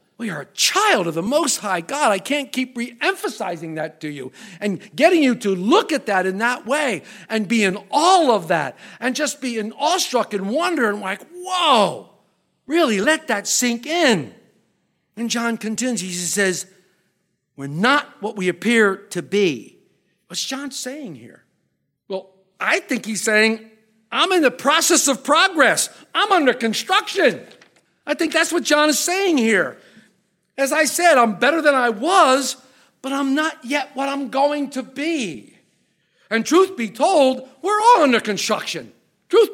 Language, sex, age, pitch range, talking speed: English, male, 50-69, 215-280 Hz, 170 wpm